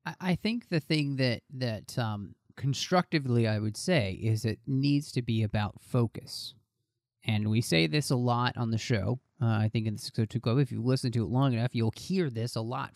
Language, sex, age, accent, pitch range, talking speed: English, male, 30-49, American, 115-145 Hz, 220 wpm